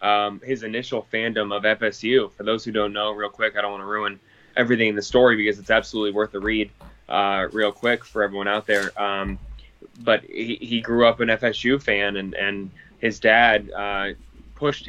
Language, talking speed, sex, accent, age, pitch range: English, 200 wpm, male, American, 10-29, 100-115 Hz